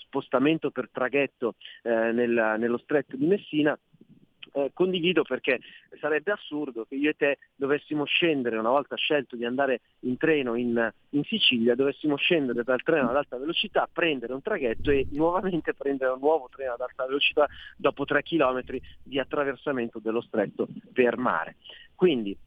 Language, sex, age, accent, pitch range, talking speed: Italian, male, 40-59, native, 125-165 Hz, 150 wpm